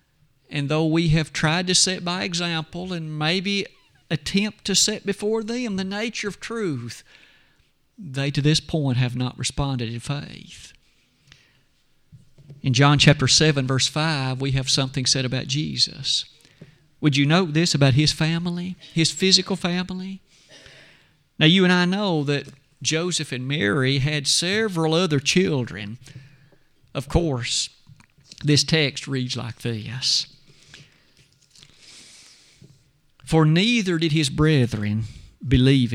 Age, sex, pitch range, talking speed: 50-69, male, 135-180 Hz, 130 wpm